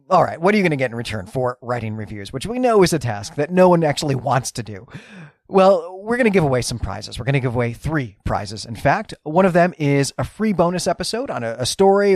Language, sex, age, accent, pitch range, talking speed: English, male, 30-49, American, 125-180 Hz, 265 wpm